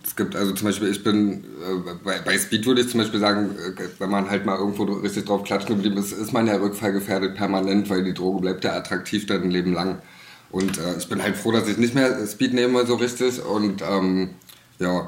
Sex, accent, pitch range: male, German, 95-105 Hz